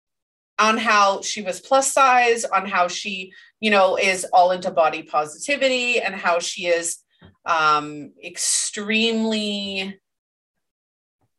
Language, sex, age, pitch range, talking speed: English, female, 30-49, 180-255 Hz, 120 wpm